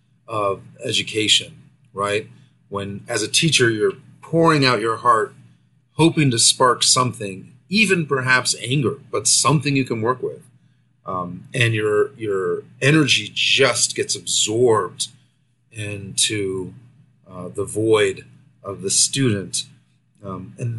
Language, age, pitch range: English, 30-49, 120-150 Hz